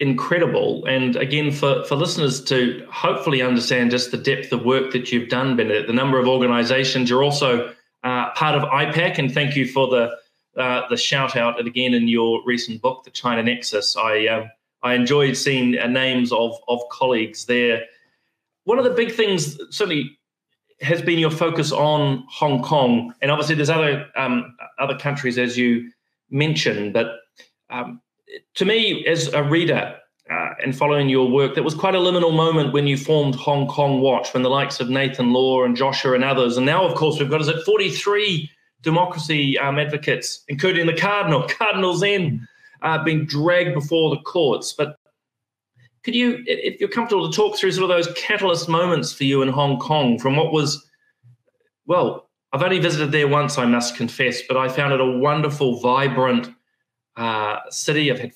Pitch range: 125-165 Hz